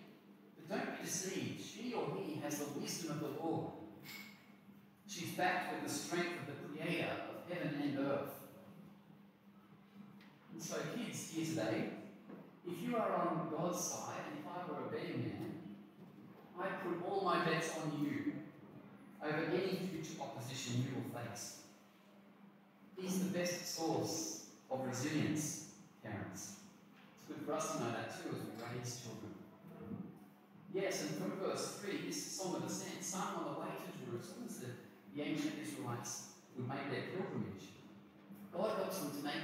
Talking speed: 160 wpm